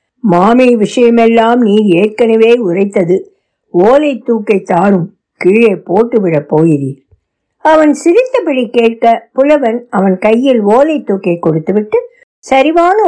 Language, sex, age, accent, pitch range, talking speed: Tamil, female, 60-79, native, 195-285 Hz, 95 wpm